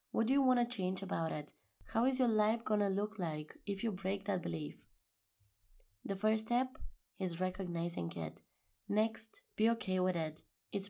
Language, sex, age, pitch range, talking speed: English, female, 20-39, 170-215 Hz, 180 wpm